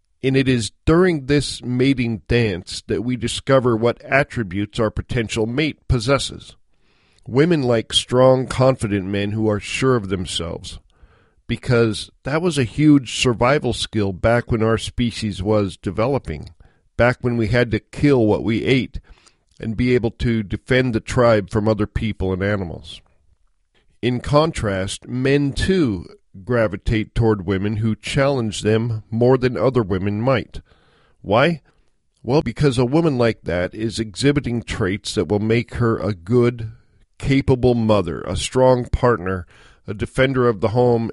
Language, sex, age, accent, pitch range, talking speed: English, male, 50-69, American, 100-125 Hz, 145 wpm